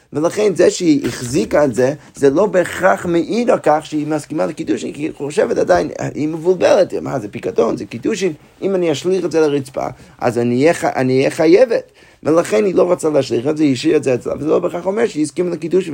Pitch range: 135-180 Hz